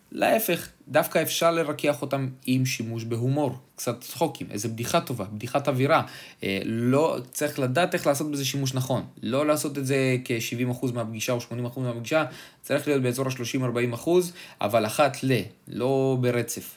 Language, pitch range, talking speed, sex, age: Hebrew, 115-140 Hz, 155 wpm, male, 20-39